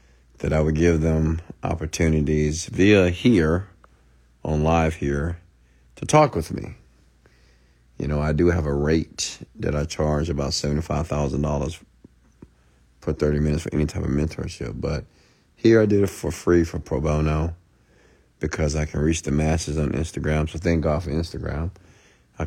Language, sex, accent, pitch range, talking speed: English, male, American, 65-85 Hz, 165 wpm